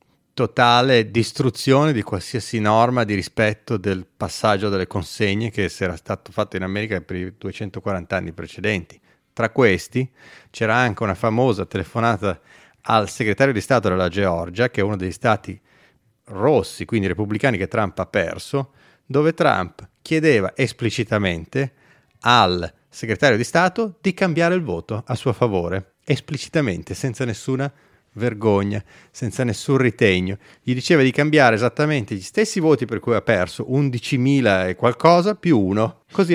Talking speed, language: 145 wpm, Italian